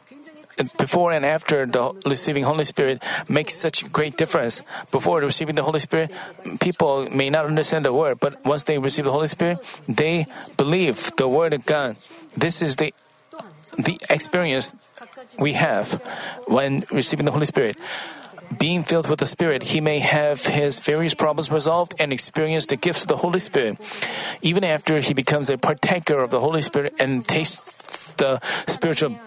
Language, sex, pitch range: Korean, male, 140-170 Hz